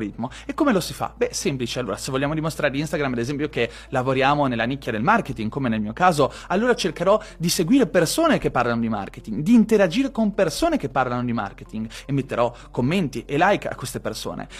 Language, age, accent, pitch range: Italian, 30-49, native, 150-205 Hz